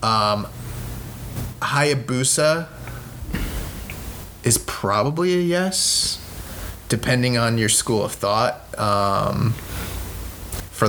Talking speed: 75 wpm